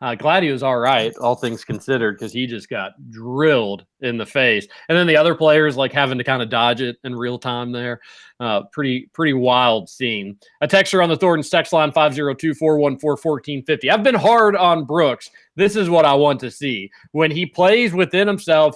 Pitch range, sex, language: 125-165 Hz, male, English